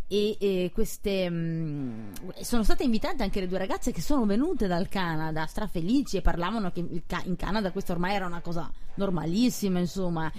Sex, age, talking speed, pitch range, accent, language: female, 20-39, 170 wpm, 170-215 Hz, native, Italian